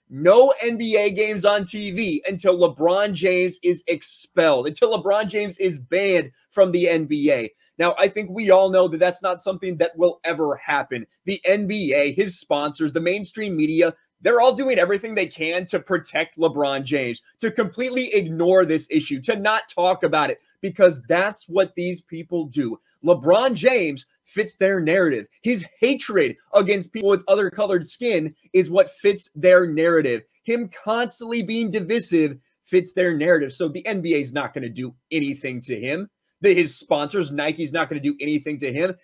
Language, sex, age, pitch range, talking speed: English, male, 20-39, 165-205 Hz, 170 wpm